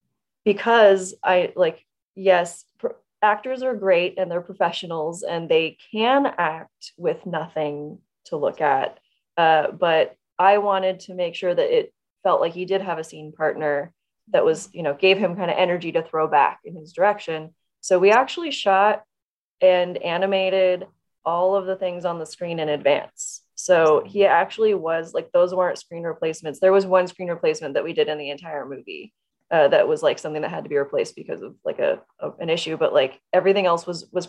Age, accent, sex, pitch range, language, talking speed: 20-39, American, female, 175-220 Hz, English, 195 wpm